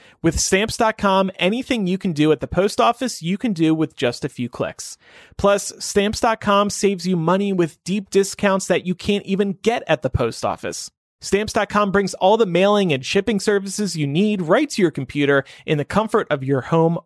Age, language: 30-49, English